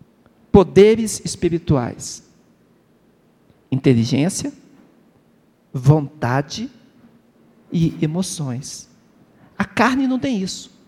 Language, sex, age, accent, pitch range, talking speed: Portuguese, male, 50-69, Brazilian, 150-220 Hz, 60 wpm